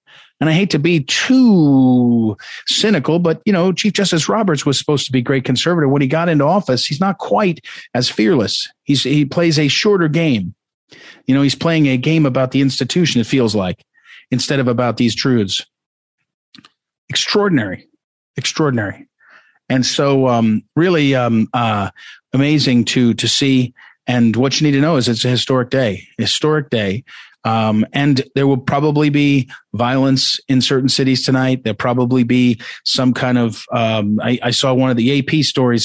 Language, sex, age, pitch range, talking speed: English, male, 50-69, 125-150 Hz, 170 wpm